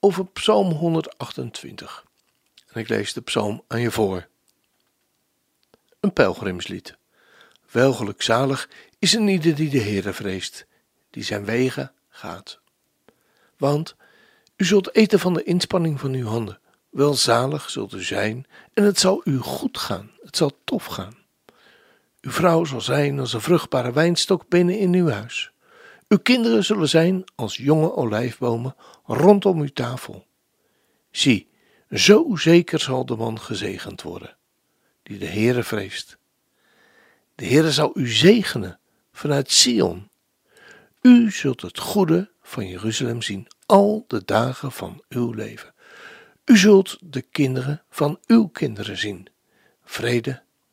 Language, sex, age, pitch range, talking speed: Dutch, male, 60-79, 120-185 Hz, 135 wpm